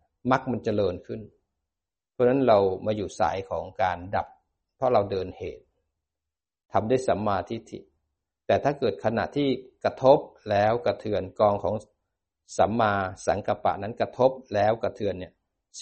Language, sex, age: Thai, male, 60-79